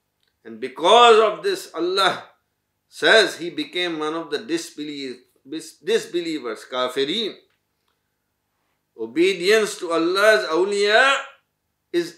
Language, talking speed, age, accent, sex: English, 90 wpm, 50-69, Indian, male